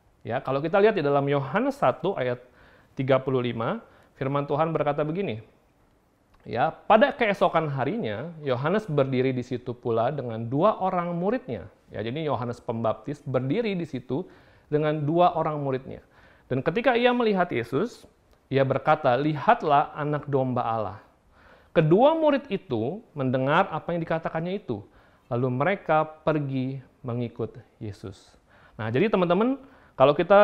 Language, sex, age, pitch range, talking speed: Indonesian, male, 40-59, 130-180 Hz, 130 wpm